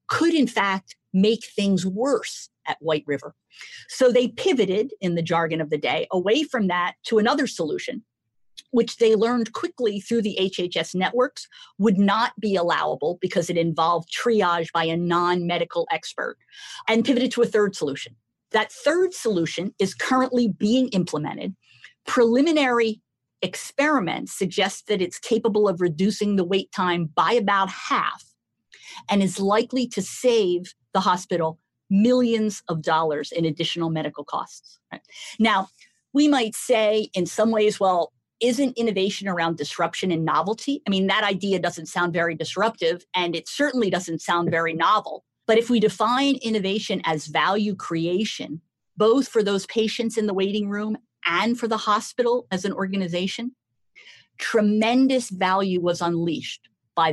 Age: 50-69